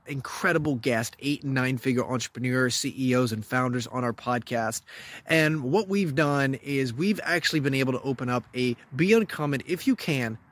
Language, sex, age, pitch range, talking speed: English, male, 30-49, 125-165 Hz, 175 wpm